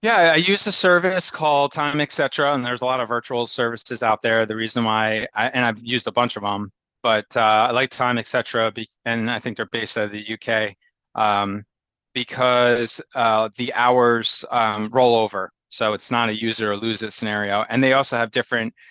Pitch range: 110-130 Hz